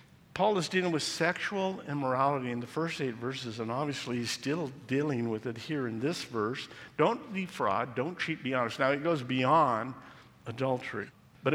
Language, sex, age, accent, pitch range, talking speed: English, male, 50-69, American, 115-150 Hz, 175 wpm